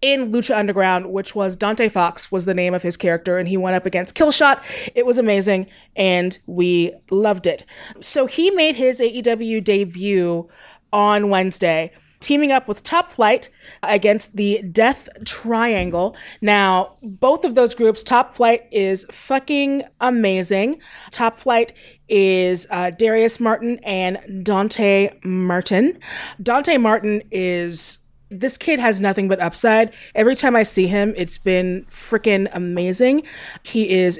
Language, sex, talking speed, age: English, female, 145 wpm, 20-39